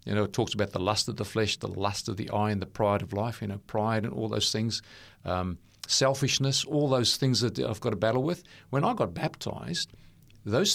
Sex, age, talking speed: male, 40-59, 240 wpm